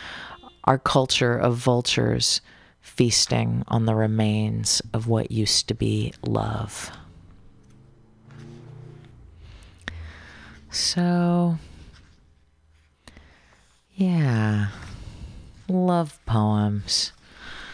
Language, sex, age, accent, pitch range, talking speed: English, female, 30-49, American, 105-130 Hz, 60 wpm